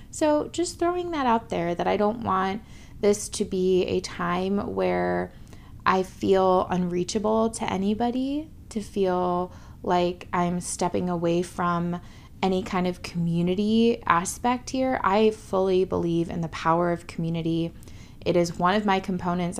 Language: English